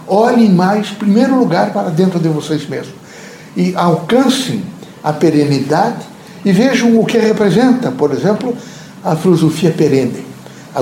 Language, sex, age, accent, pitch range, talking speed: Portuguese, male, 60-79, Brazilian, 155-220 Hz, 135 wpm